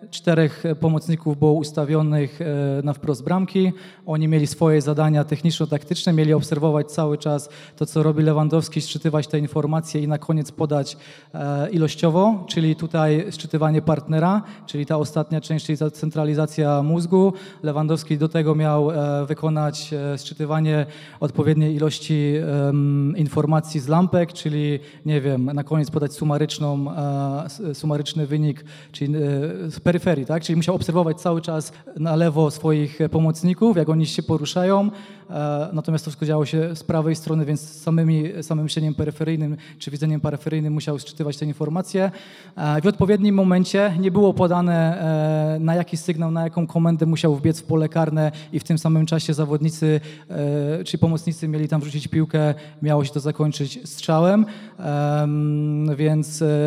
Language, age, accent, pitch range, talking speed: Polish, 20-39, native, 150-165 Hz, 135 wpm